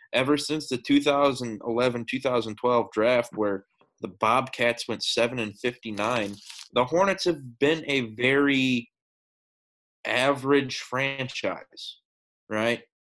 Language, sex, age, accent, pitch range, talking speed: English, male, 20-39, American, 115-140 Hz, 95 wpm